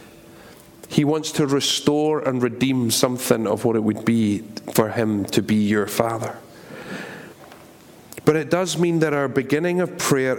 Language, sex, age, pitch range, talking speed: English, male, 40-59, 115-145 Hz, 155 wpm